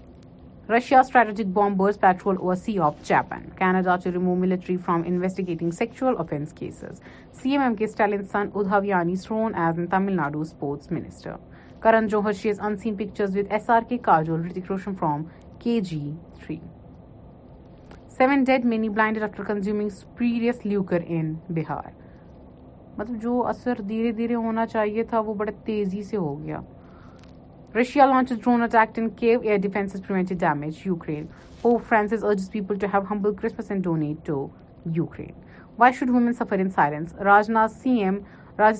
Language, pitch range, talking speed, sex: Urdu, 175-220 Hz, 140 wpm, female